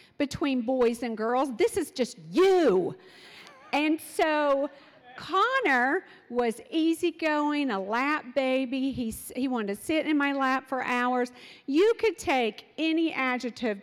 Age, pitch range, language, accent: 50-69, 215-310 Hz, English, American